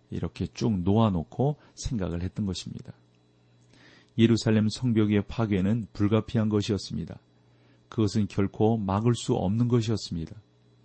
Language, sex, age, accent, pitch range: Korean, male, 40-59, native, 90-115 Hz